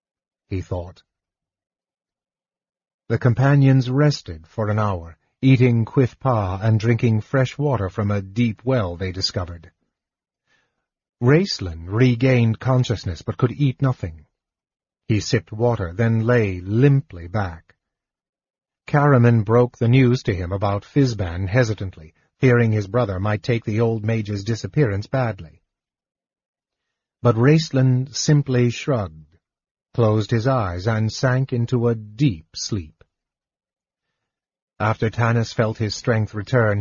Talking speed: 120 wpm